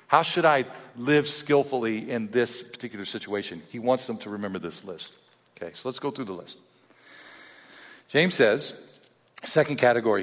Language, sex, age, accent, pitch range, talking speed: English, male, 50-69, American, 115-160 Hz, 160 wpm